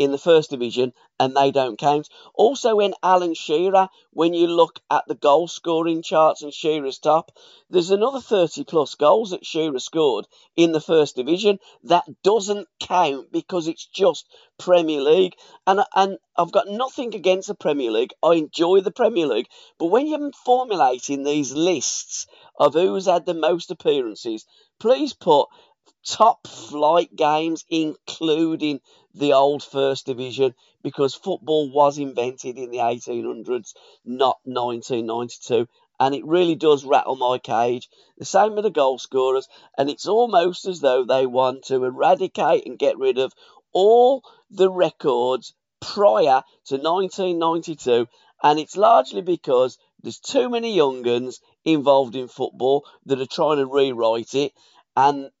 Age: 40-59